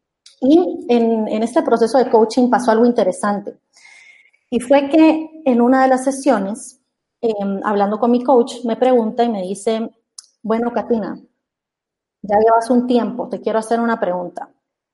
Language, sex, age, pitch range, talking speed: Spanish, female, 30-49, 210-270 Hz, 155 wpm